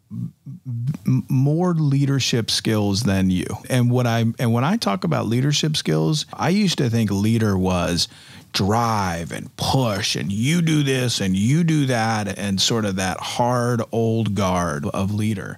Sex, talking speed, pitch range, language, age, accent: male, 160 wpm, 110-135 Hz, English, 40-59, American